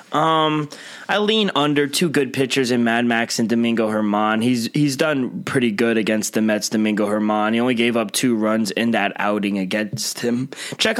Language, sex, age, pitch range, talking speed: English, male, 20-39, 115-145 Hz, 190 wpm